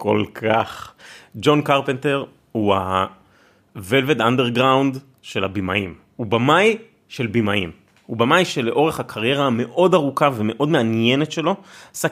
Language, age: Hebrew, 30-49